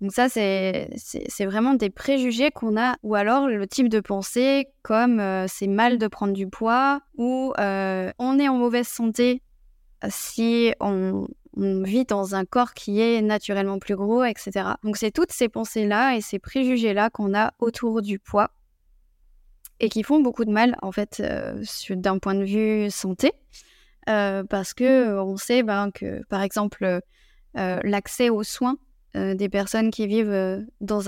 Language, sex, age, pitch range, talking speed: French, female, 20-39, 205-250 Hz, 180 wpm